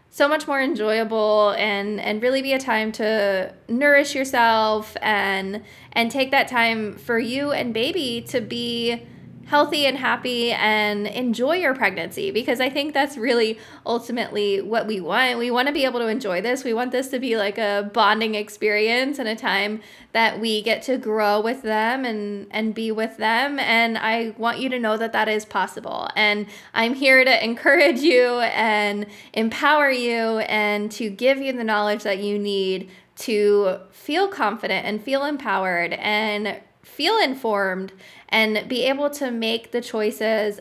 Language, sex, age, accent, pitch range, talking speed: English, female, 20-39, American, 210-255 Hz, 170 wpm